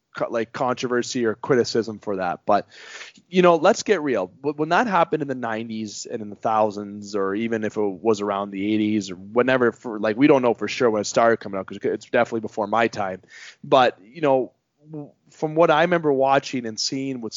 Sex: male